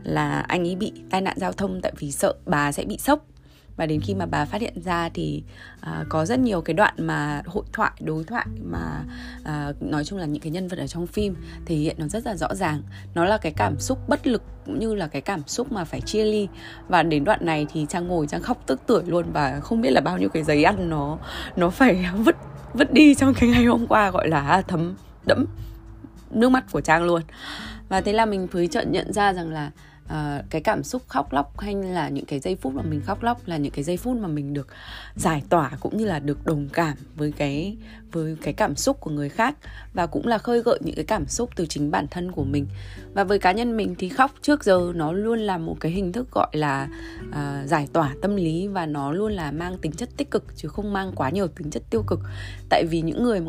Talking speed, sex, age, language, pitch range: 250 wpm, female, 20-39, Vietnamese, 145-200 Hz